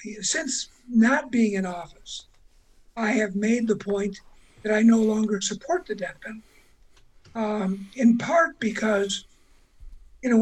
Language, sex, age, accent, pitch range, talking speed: English, male, 60-79, American, 205-255 Hz, 130 wpm